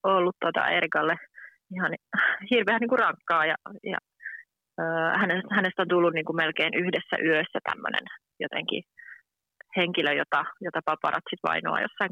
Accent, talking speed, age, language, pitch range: native, 125 wpm, 30-49, Finnish, 165-210 Hz